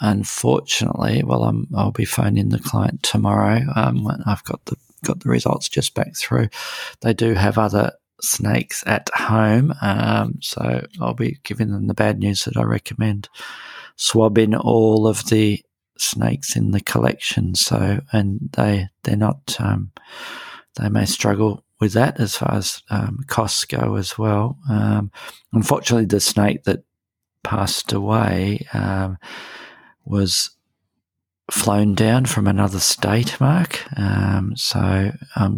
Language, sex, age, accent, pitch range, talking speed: English, male, 40-59, Australian, 100-115 Hz, 140 wpm